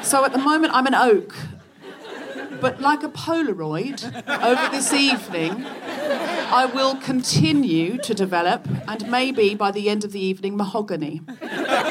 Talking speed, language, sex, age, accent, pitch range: 140 wpm, English, female, 40-59, British, 190-280 Hz